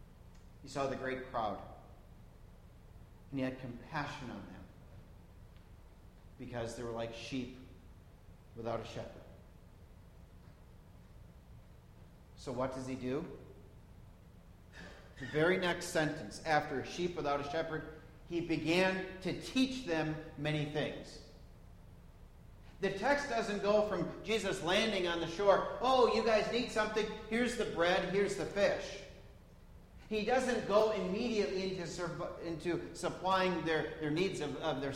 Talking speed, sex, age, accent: 130 wpm, male, 50-69, American